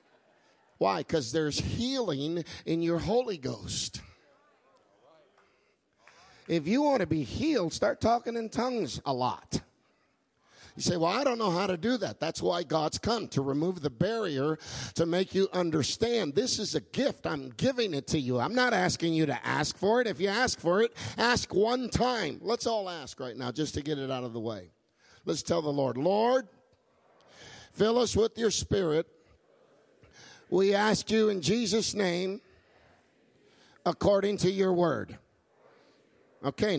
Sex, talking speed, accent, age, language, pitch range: male, 165 wpm, American, 50-69, English, 165-230 Hz